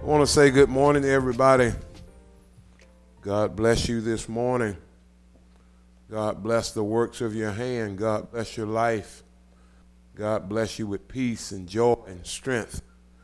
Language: English